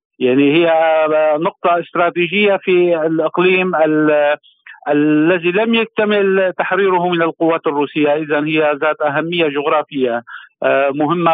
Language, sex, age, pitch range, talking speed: Arabic, male, 50-69, 155-180 Hz, 100 wpm